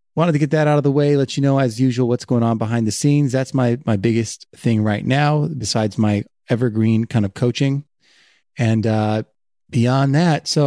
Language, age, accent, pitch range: English, 30-49, American, 115-145 Hz